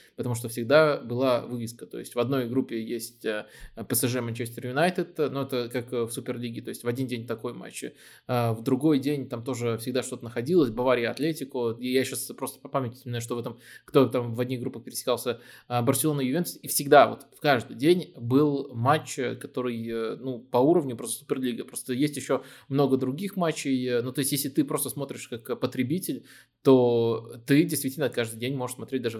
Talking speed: 185 wpm